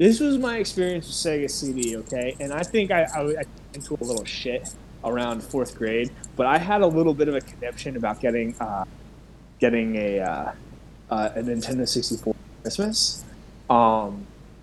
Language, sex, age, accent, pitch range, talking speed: English, male, 20-39, American, 125-165 Hz, 170 wpm